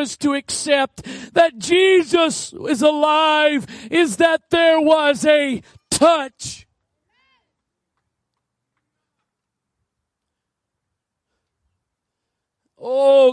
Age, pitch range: 40-59, 215-275 Hz